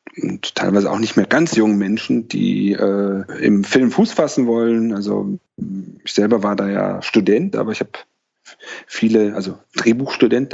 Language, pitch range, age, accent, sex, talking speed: German, 100-115 Hz, 30-49, German, male, 160 wpm